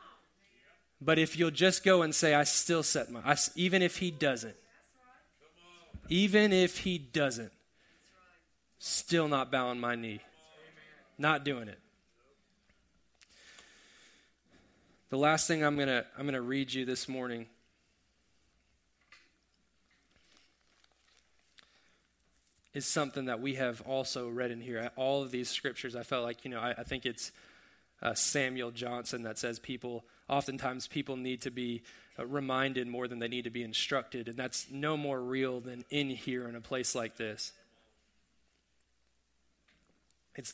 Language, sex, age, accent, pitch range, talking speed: English, male, 20-39, American, 120-145 Hz, 145 wpm